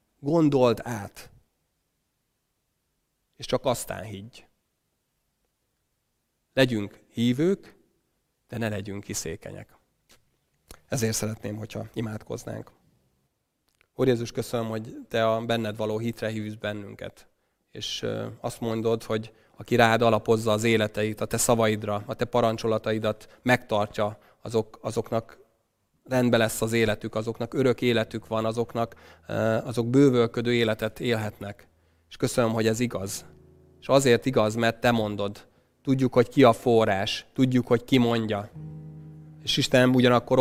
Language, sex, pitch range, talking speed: Hungarian, male, 110-125 Hz, 120 wpm